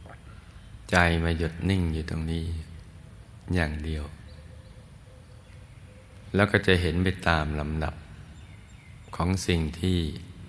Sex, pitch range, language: male, 80-95 Hz, Thai